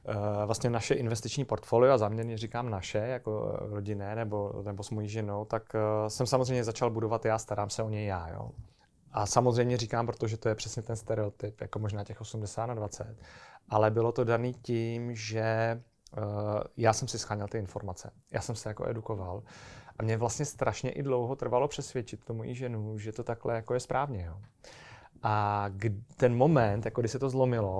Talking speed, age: 180 wpm, 30-49